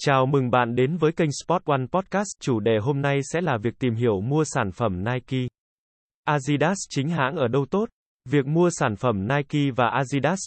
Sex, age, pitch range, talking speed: male, 20-39, 120-155 Hz, 200 wpm